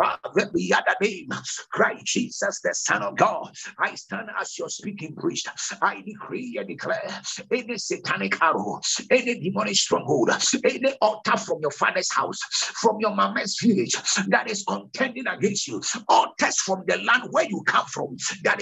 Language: English